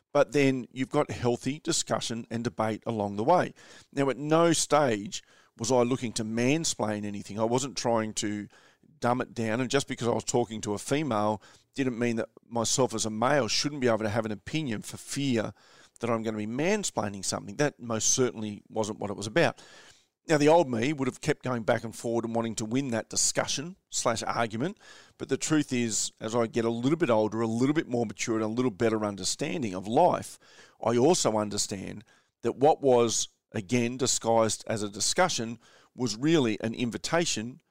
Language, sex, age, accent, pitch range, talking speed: English, male, 40-59, Australian, 110-130 Hz, 200 wpm